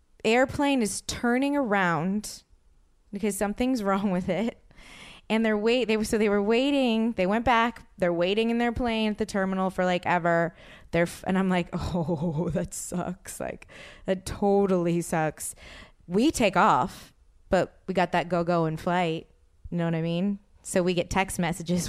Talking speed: 175 wpm